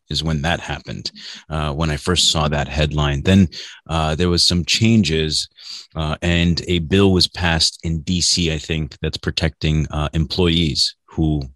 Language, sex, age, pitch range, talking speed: English, male, 30-49, 75-90 Hz, 165 wpm